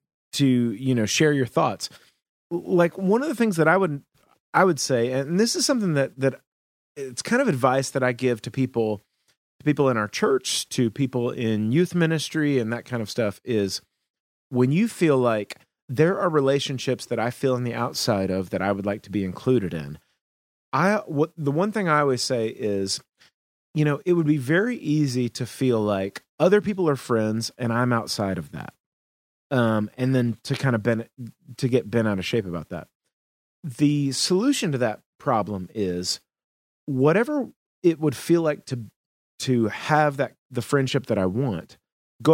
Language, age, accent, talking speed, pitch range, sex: English, 30-49, American, 190 wpm, 115-155 Hz, male